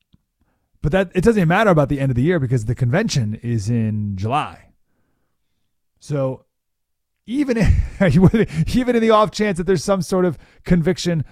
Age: 30-49